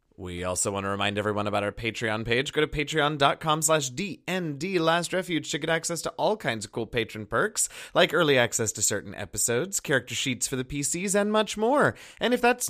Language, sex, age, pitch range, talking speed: English, male, 30-49, 115-180 Hz, 200 wpm